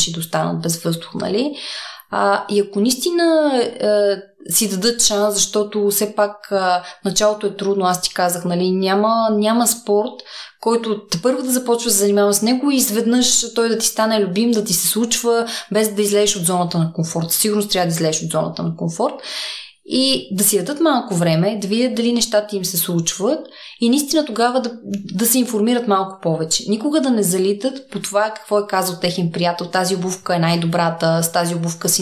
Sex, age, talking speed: female, 20-39, 195 wpm